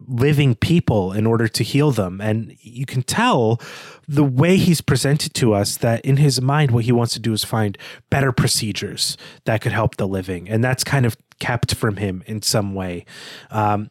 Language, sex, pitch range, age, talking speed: English, male, 105-135 Hz, 30-49, 200 wpm